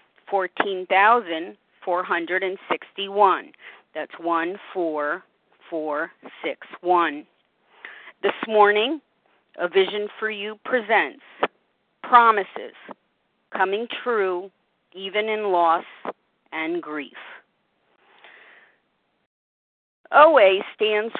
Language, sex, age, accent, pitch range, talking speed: English, female, 40-59, American, 175-225 Hz, 55 wpm